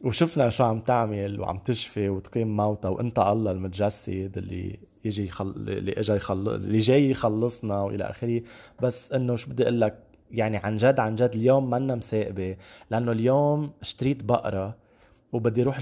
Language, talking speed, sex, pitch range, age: English, 150 wpm, male, 110-135 Hz, 20-39